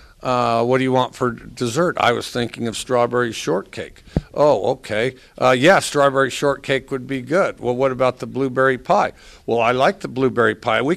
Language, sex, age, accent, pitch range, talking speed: English, male, 50-69, American, 110-140 Hz, 190 wpm